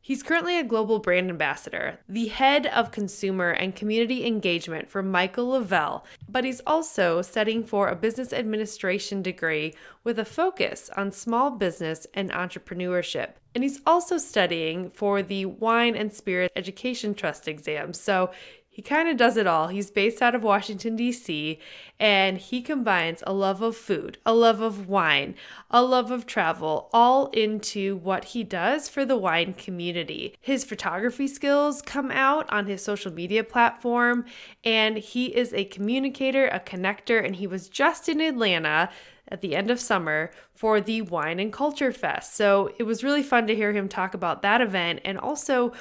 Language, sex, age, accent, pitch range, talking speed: English, female, 20-39, American, 185-240 Hz, 170 wpm